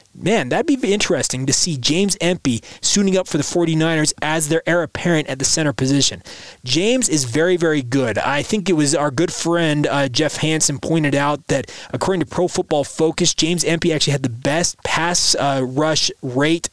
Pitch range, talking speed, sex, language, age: 140-175 Hz, 195 wpm, male, English, 30-49